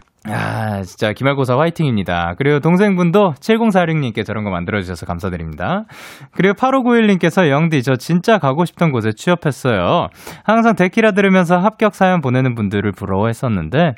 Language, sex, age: Korean, male, 20-39